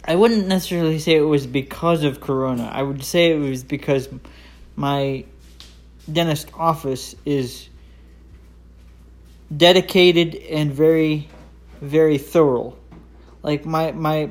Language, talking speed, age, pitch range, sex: English, 115 wpm, 20-39, 120-155 Hz, male